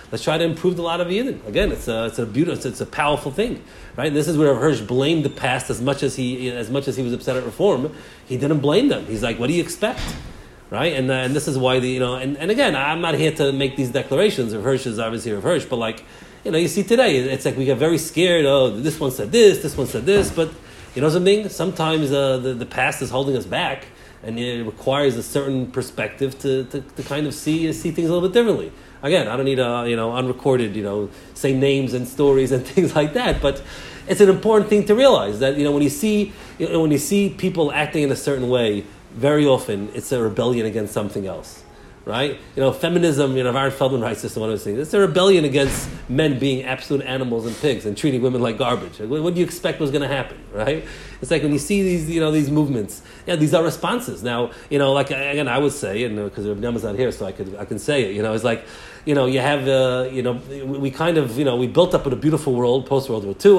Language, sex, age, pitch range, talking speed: English, male, 40-59, 125-155 Hz, 265 wpm